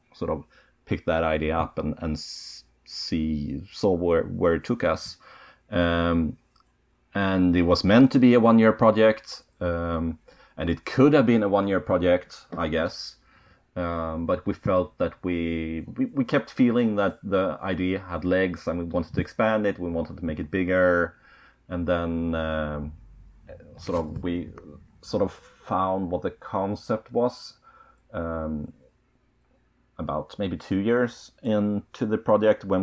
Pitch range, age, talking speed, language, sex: 80-100 Hz, 30-49, 155 wpm, English, male